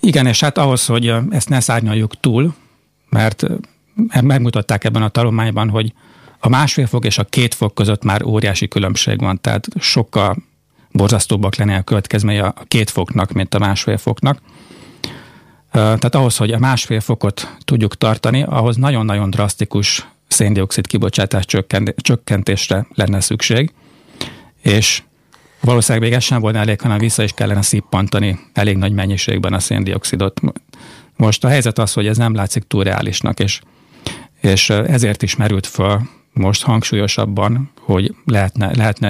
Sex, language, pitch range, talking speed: male, Hungarian, 100-120 Hz, 145 wpm